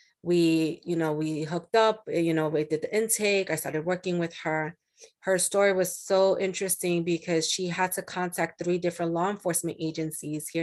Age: 30-49